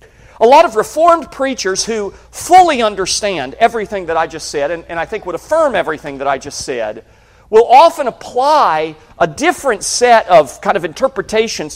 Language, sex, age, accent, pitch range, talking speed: English, male, 40-59, American, 175-270 Hz, 175 wpm